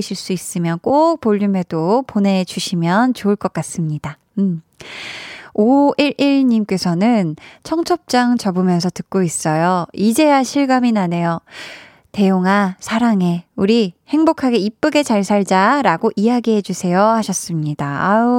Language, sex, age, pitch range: Korean, female, 20-39, 185-255 Hz